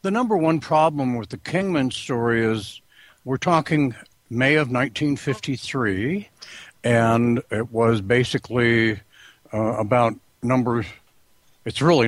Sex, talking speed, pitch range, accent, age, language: male, 110 wpm, 115-140 Hz, American, 60-79, English